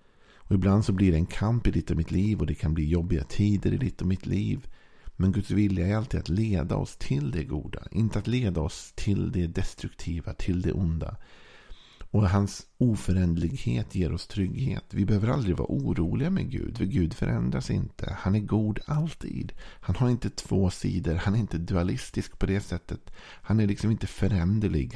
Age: 50-69